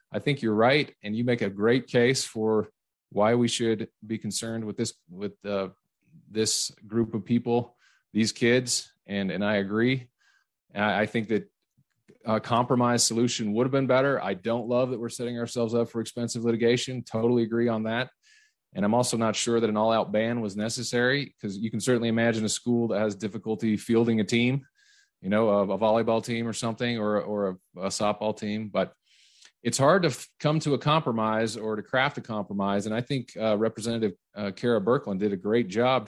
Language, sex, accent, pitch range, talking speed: English, male, American, 110-120 Hz, 200 wpm